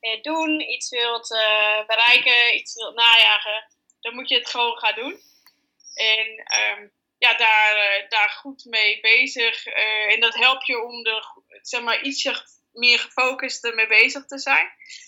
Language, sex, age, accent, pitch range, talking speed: Dutch, female, 20-39, Dutch, 215-250 Hz, 160 wpm